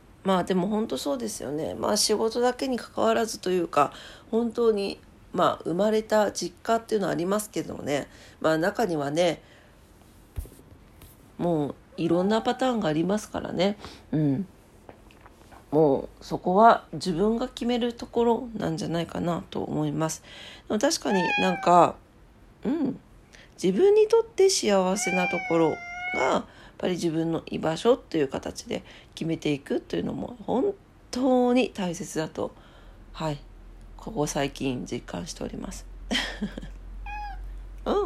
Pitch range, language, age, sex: 160-235 Hz, Japanese, 40-59, female